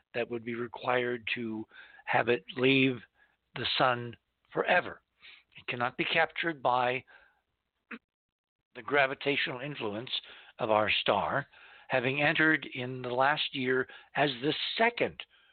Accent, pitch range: American, 125-165 Hz